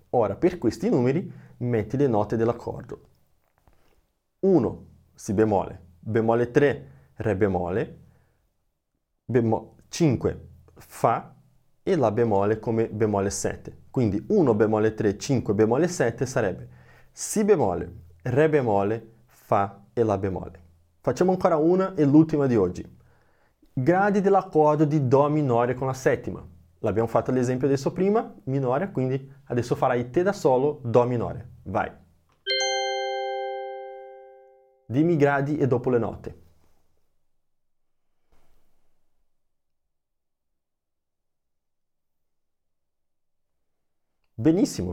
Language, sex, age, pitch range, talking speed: Italian, male, 20-39, 95-150 Hz, 105 wpm